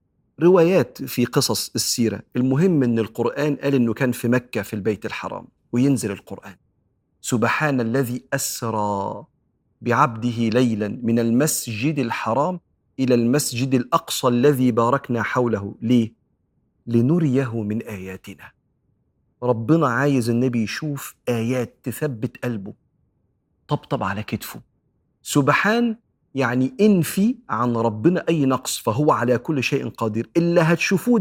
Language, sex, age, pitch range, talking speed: Arabic, male, 40-59, 115-160 Hz, 115 wpm